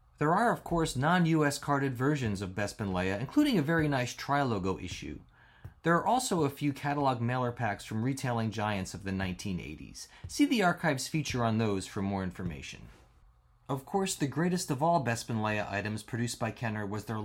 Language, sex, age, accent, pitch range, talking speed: English, male, 30-49, American, 105-150 Hz, 185 wpm